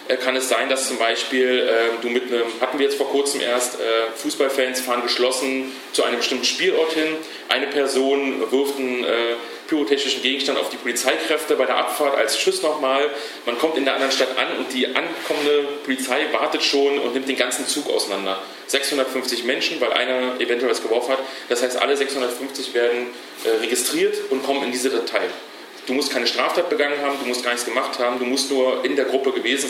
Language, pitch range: German, 125-140 Hz